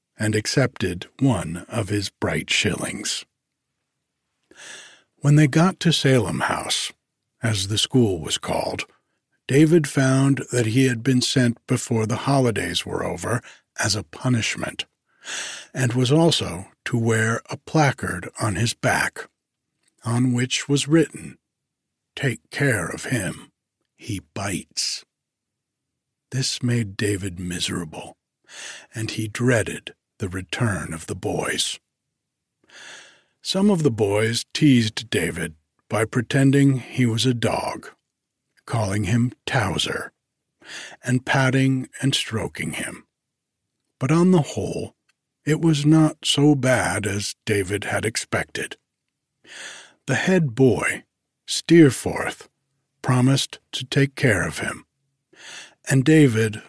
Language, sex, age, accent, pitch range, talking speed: English, male, 60-79, American, 110-140 Hz, 115 wpm